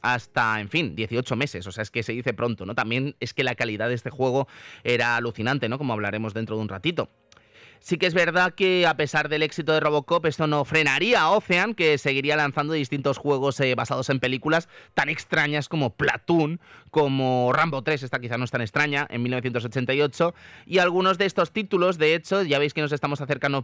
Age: 30-49